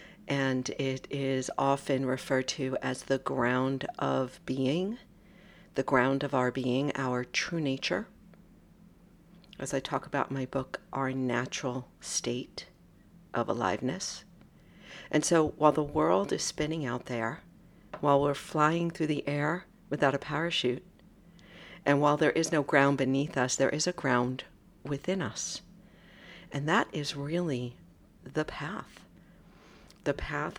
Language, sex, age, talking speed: English, female, 60-79, 140 wpm